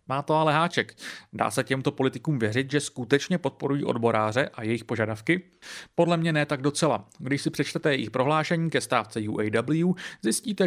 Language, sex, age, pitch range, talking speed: Czech, male, 30-49, 120-160 Hz, 170 wpm